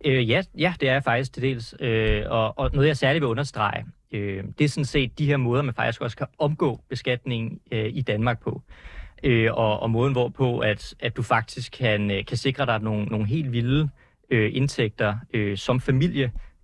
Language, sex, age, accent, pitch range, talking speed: Danish, male, 30-49, native, 115-135 Hz, 180 wpm